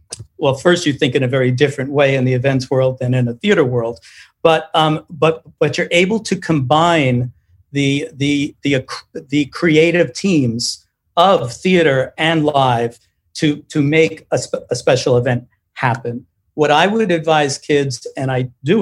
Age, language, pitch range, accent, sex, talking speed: 50-69, English, 130-160 Hz, American, male, 170 wpm